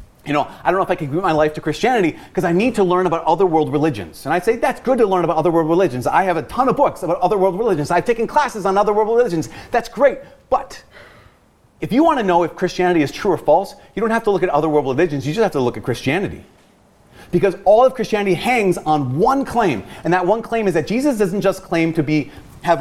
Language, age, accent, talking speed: English, 30-49, American, 265 wpm